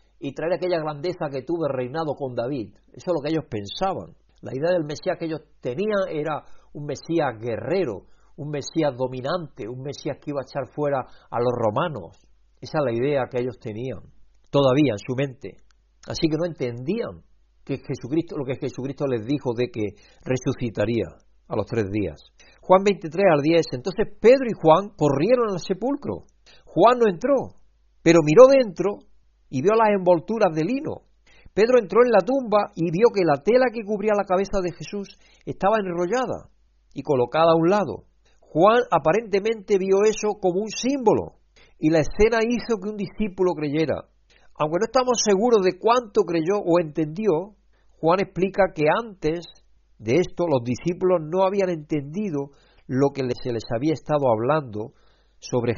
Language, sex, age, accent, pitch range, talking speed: Spanish, male, 60-79, Spanish, 130-195 Hz, 170 wpm